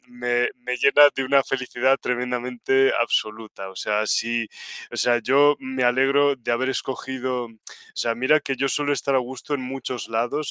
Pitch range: 115-135 Hz